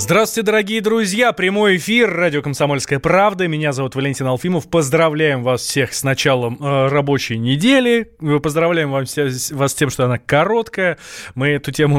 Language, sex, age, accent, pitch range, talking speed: Russian, male, 20-39, native, 130-170 Hz, 170 wpm